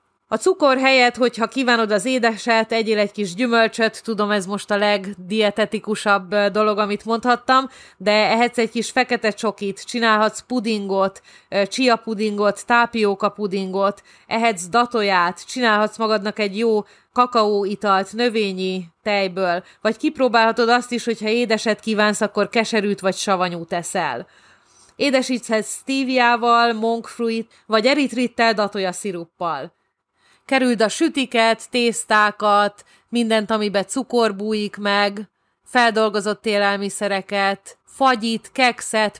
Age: 30-49